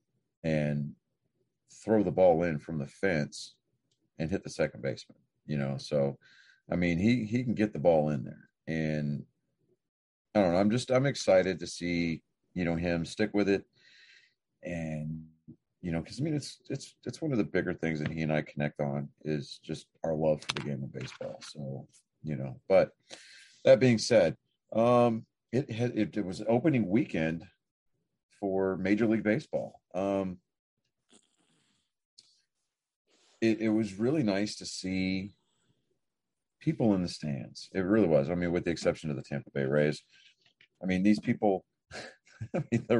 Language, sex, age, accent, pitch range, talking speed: English, male, 40-59, American, 80-115 Hz, 165 wpm